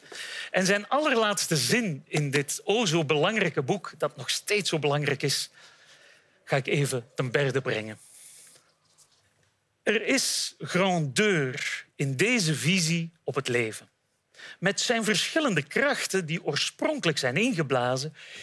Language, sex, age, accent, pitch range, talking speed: Dutch, male, 40-59, Dutch, 140-205 Hz, 125 wpm